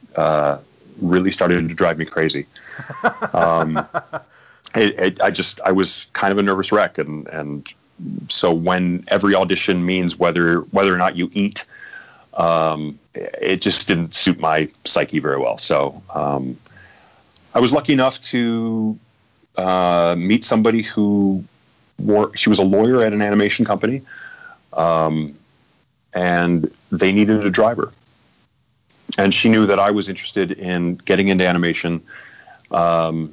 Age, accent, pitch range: 30-49, American, 85-110 Hz